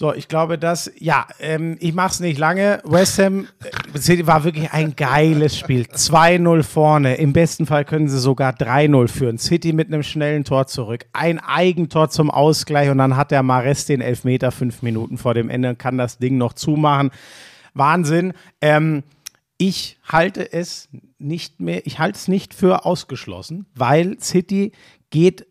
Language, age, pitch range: German, 50-69, 130-165 Hz